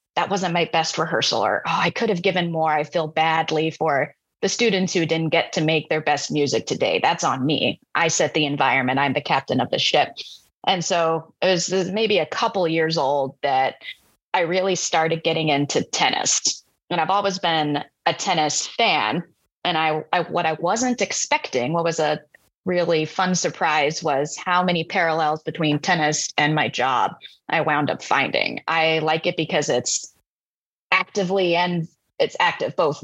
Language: English